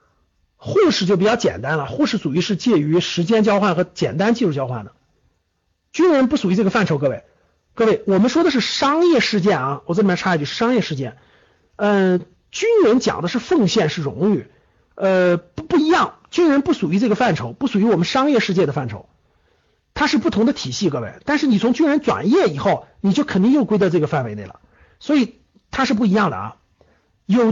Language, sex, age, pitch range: Chinese, male, 50-69, 170-250 Hz